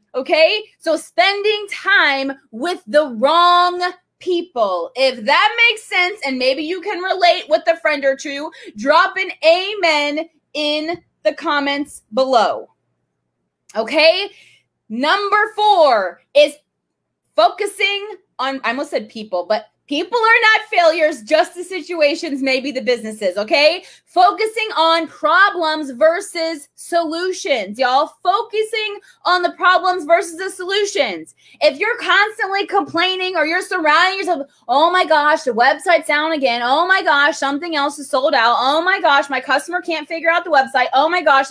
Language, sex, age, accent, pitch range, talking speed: English, female, 20-39, American, 275-365 Hz, 145 wpm